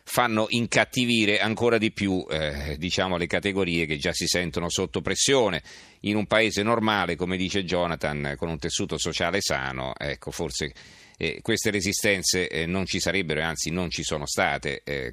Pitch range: 80-100 Hz